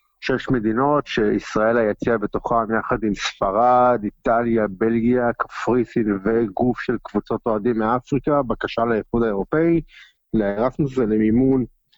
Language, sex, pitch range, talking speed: Hebrew, male, 105-125 Hz, 115 wpm